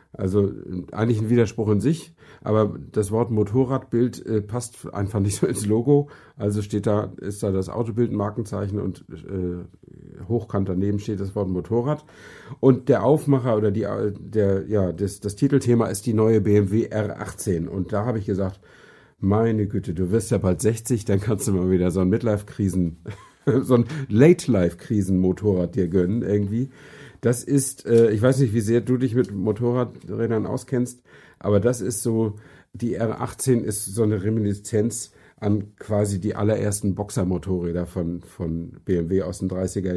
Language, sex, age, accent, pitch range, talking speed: German, male, 50-69, German, 100-115 Hz, 165 wpm